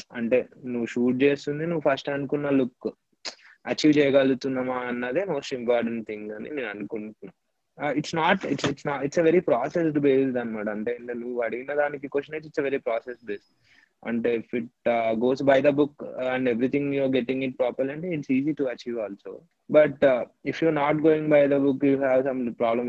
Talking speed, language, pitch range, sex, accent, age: 160 wpm, Telugu, 110-135 Hz, male, native, 20-39